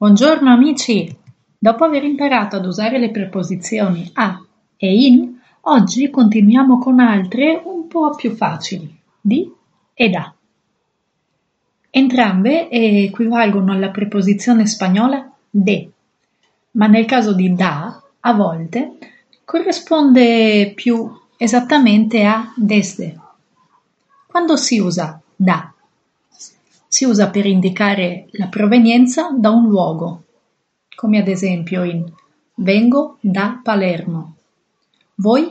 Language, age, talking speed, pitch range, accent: Spanish, 30-49, 105 wpm, 190-245 Hz, Italian